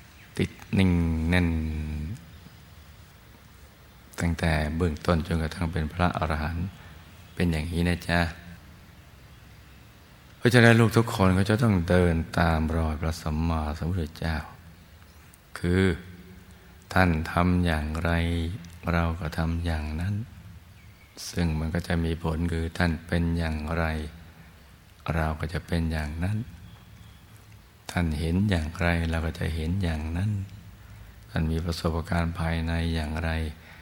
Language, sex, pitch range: Thai, male, 80-90 Hz